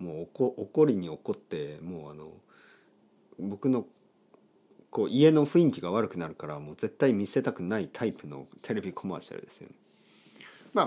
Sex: male